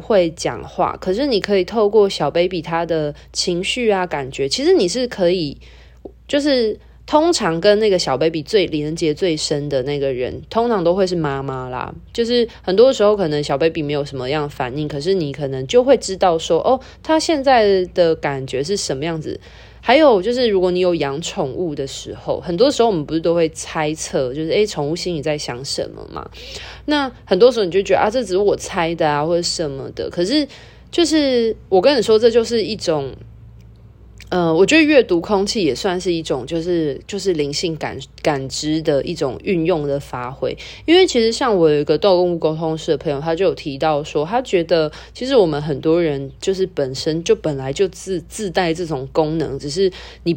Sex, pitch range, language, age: female, 145-200 Hz, Chinese, 20-39